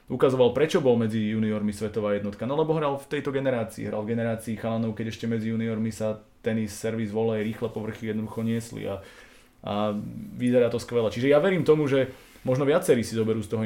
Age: 20-39